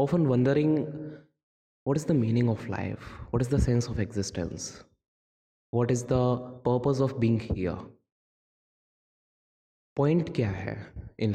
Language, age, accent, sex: Hindi, 20-39, native, male